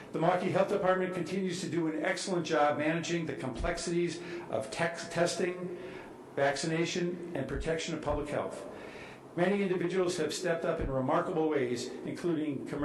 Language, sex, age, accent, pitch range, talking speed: English, male, 60-79, American, 145-180 Hz, 140 wpm